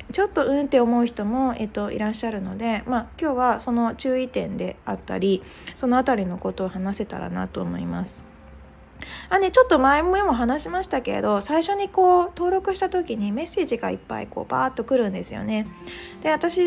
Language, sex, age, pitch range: Japanese, female, 20-39, 200-305 Hz